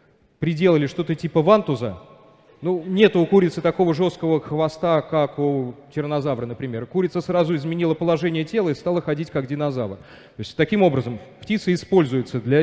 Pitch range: 130-175 Hz